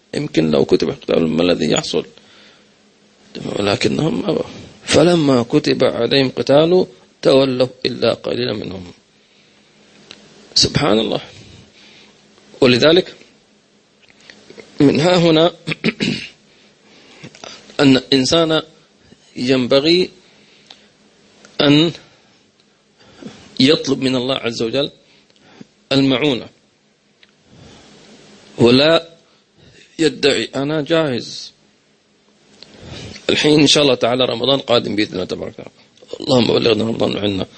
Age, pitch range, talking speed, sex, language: 40-59, 120-180 Hz, 80 wpm, male, English